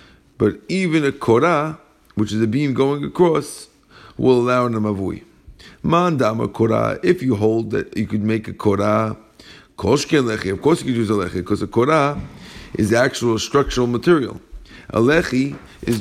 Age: 50-69